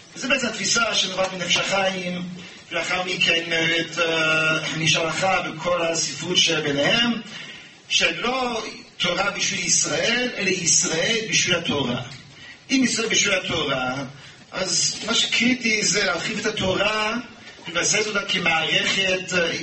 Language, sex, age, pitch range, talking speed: English, male, 40-59, 155-205 Hz, 100 wpm